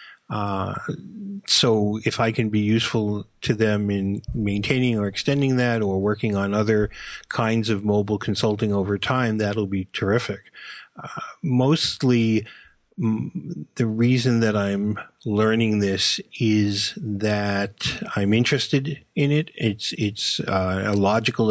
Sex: male